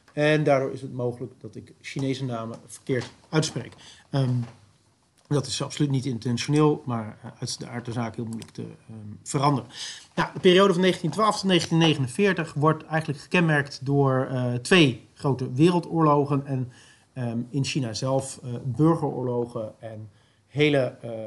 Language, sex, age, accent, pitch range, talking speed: Dutch, male, 40-59, Dutch, 120-145 Hz, 150 wpm